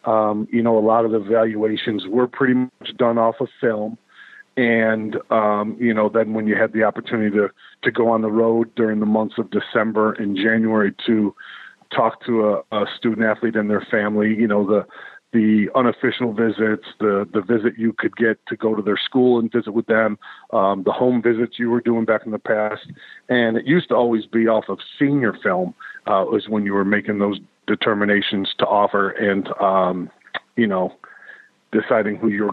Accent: American